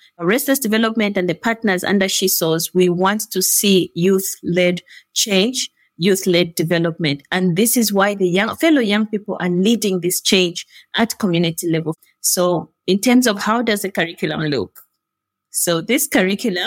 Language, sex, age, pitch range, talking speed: English, female, 30-49, 180-225 Hz, 155 wpm